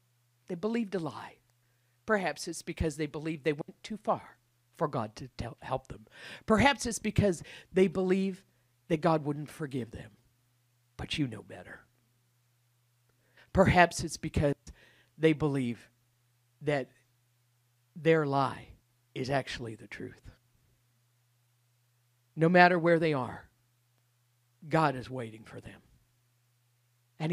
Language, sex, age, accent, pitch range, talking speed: English, male, 50-69, American, 120-155 Hz, 120 wpm